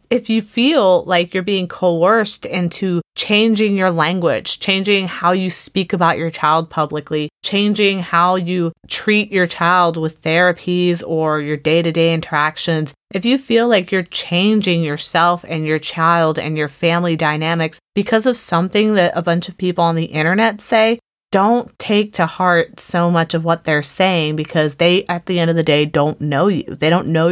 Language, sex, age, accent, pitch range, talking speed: English, female, 30-49, American, 165-195 Hz, 180 wpm